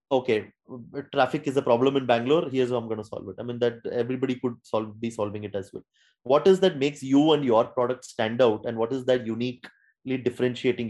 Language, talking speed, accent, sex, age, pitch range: English, 220 wpm, Indian, male, 30-49, 120-145 Hz